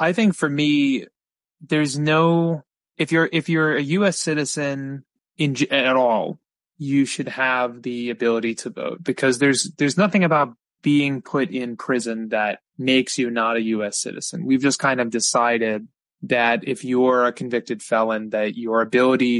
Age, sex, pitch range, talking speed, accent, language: 20-39, male, 120-150 Hz, 160 wpm, American, English